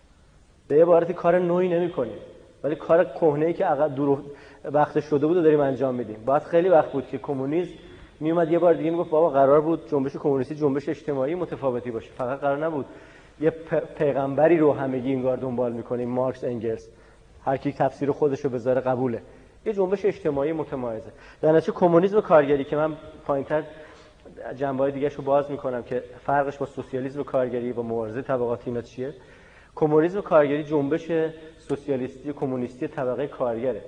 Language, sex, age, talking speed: Persian, male, 30-49, 160 wpm